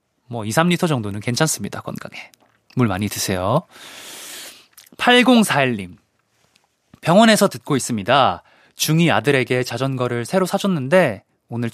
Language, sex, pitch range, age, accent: Korean, male, 115-155 Hz, 20-39, native